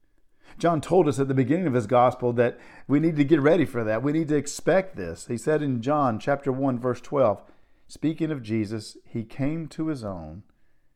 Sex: male